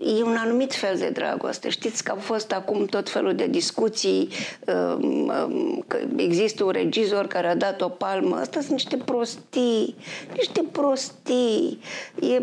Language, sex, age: Romanian, female, 50-69